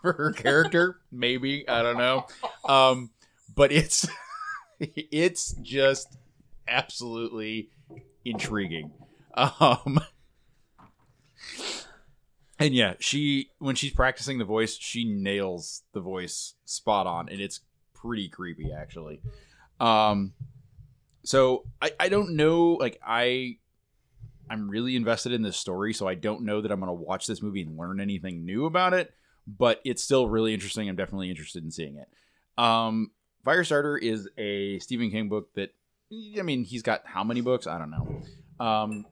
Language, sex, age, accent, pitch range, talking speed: English, male, 20-39, American, 100-130 Hz, 145 wpm